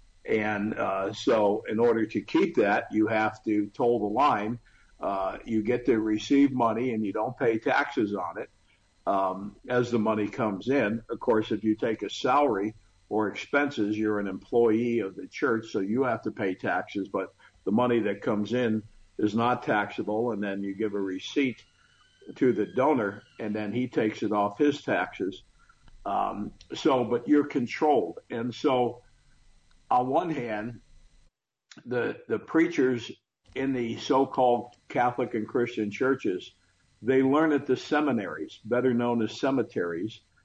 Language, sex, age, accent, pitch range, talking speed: English, male, 50-69, American, 110-130 Hz, 160 wpm